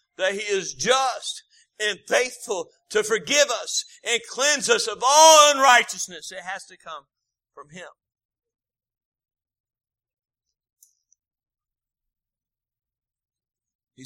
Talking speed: 95 wpm